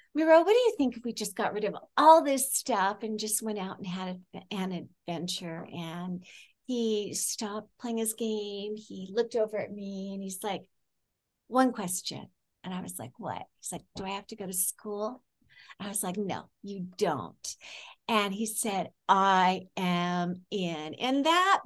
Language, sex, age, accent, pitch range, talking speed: English, female, 50-69, American, 195-235 Hz, 185 wpm